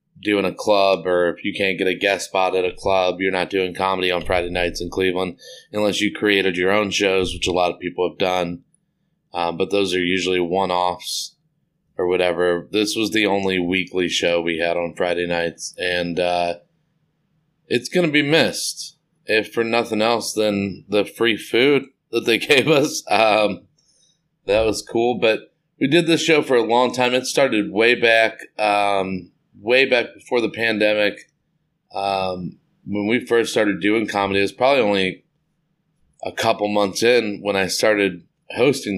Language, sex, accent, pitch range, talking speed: English, male, American, 90-120 Hz, 175 wpm